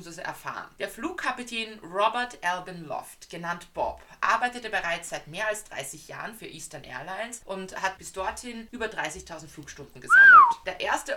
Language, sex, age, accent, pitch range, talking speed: German, female, 20-39, German, 155-215 Hz, 150 wpm